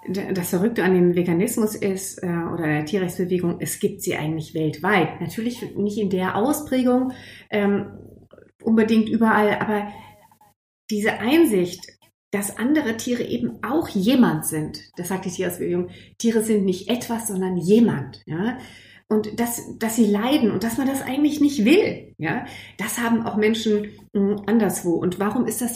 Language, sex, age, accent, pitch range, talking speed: German, female, 30-49, German, 180-225 Hz, 155 wpm